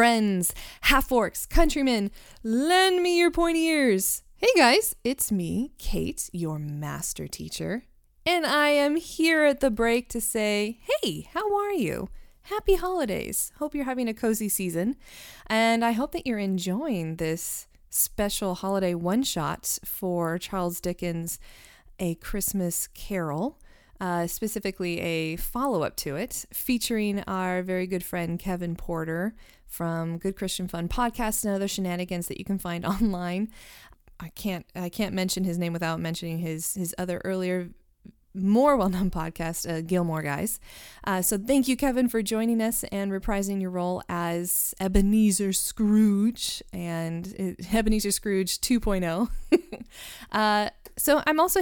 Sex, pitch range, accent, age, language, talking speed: female, 180-255 Hz, American, 20-39, English, 140 wpm